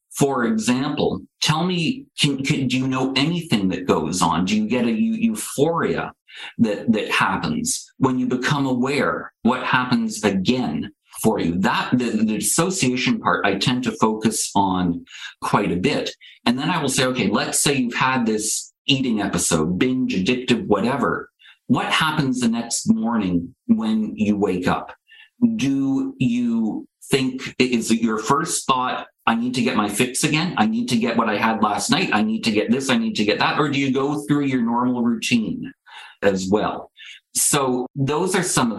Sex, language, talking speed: male, English, 180 wpm